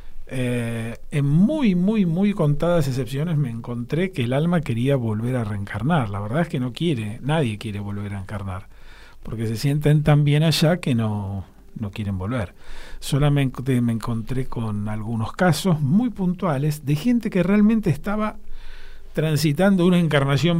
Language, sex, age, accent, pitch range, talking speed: Spanish, male, 40-59, Argentinian, 110-160 Hz, 155 wpm